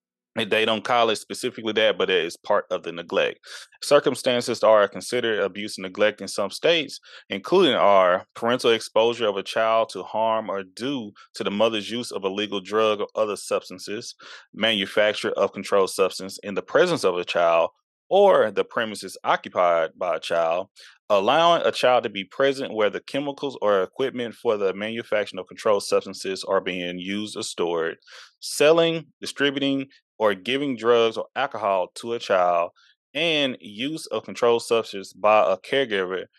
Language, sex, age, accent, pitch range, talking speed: English, male, 20-39, American, 100-135 Hz, 165 wpm